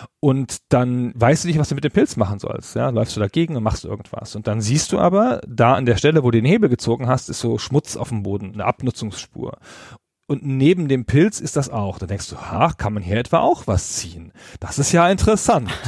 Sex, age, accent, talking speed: male, 40-59, German, 240 wpm